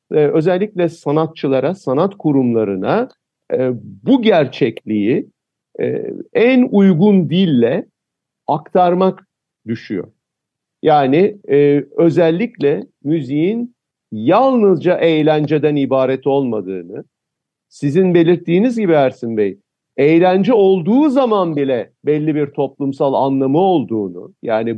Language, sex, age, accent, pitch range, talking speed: Turkish, male, 50-69, native, 135-185 Hz, 80 wpm